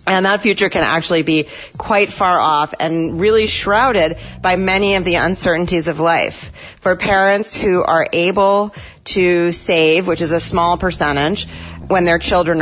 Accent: American